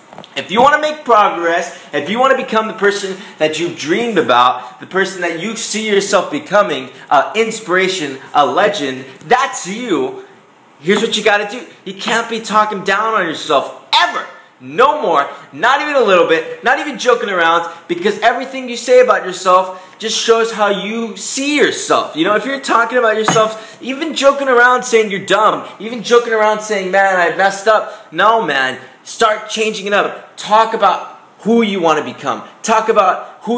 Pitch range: 180-230 Hz